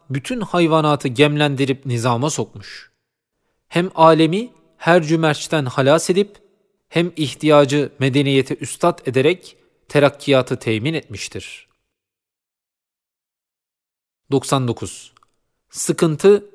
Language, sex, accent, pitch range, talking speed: Turkish, male, native, 125-160 Hz, 75 wpm